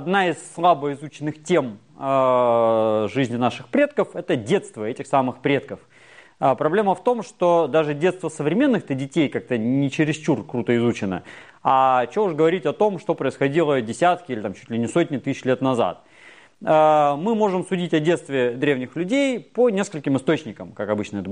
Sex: male